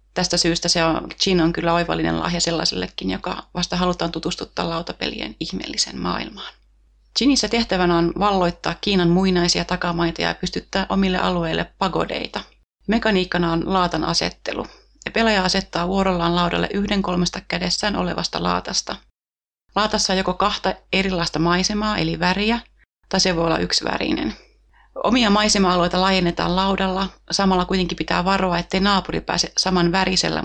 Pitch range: 170-195 Hz